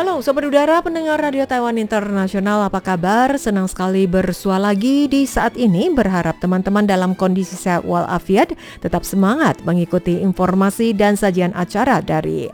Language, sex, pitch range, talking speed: Indonesian, female, 170-225 Hz, 145 wpm